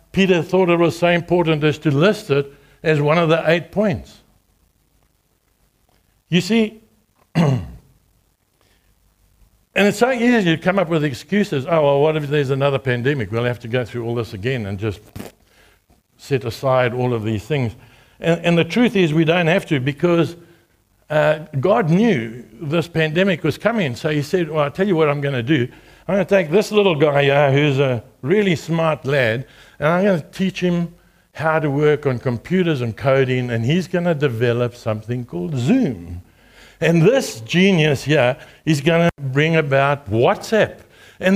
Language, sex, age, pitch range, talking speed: English, male, 60-79, 135-190 Hz, 180 wpm